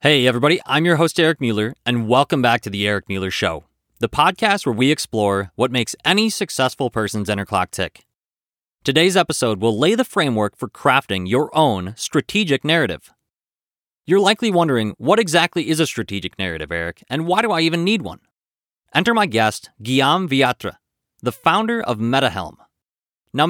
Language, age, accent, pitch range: English, 30-49, American, 110-180 Hz